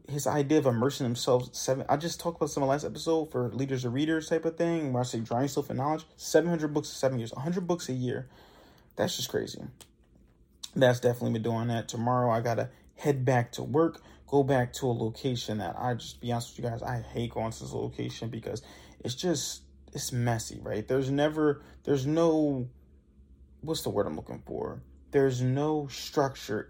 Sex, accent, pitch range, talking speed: male, American, 120-165 Hz, 205 wpm